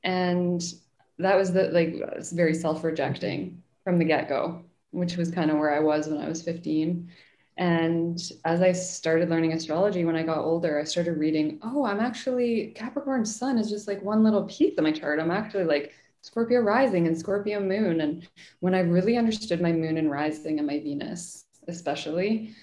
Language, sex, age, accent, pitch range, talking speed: English, female, 20-39, American, 155-185 Hz, 190 wpm